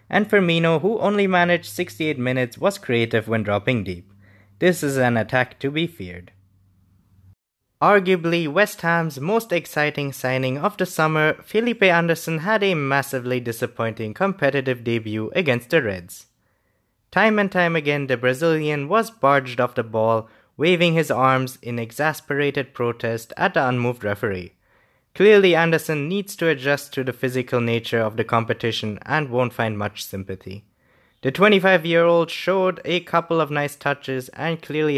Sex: male